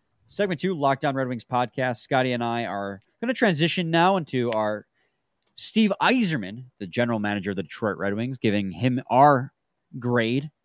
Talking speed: 170 wpm